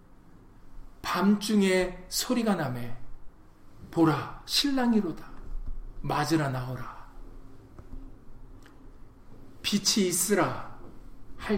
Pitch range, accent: 130-215 Hz, native